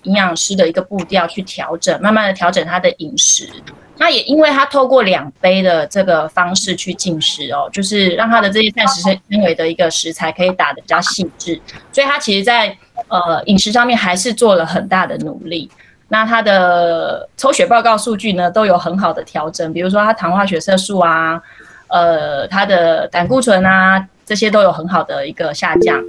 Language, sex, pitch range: Chinese, female, 180-235 Hz